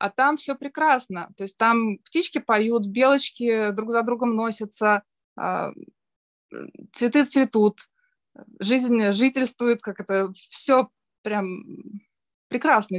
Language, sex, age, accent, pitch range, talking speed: Russian, female, 20-39, native, 200-245 Hz, 105 wpm